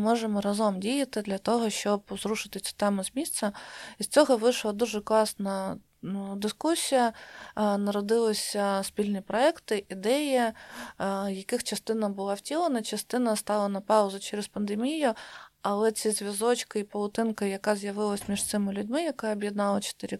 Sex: female